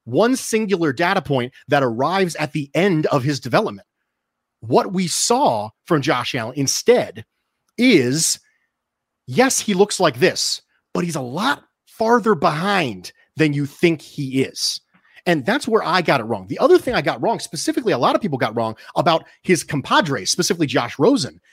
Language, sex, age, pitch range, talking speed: English, male, 30-49, 150-210 Hz, 175 wpm